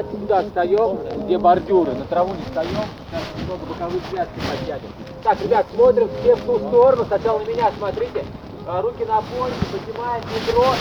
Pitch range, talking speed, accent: 205-250 Hz, 160 wpm, native